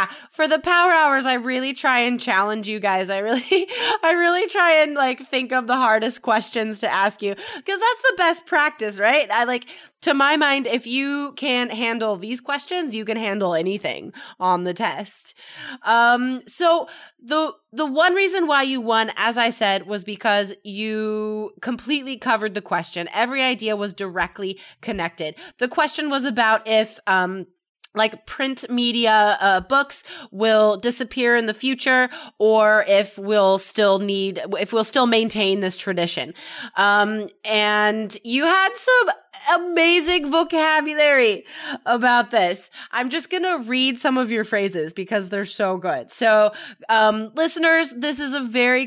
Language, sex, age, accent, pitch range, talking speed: English, female, 20-39, American, 205-275 Hz, 160 wpm